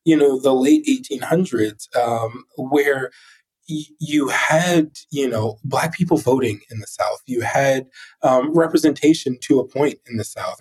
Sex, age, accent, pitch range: male, 20-39, American, 110-145 Hz